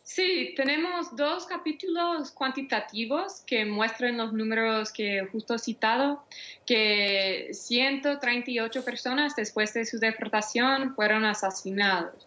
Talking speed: 105 wpm